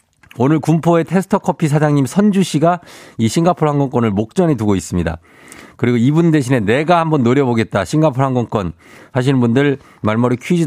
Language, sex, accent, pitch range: Korean, male, native, 105-155 Hz